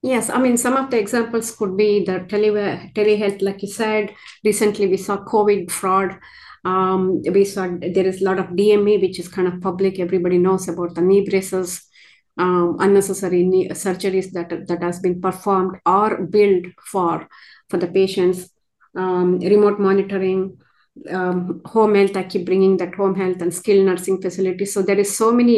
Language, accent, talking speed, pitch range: English, Indian, 180 wpm, 180-200 Hz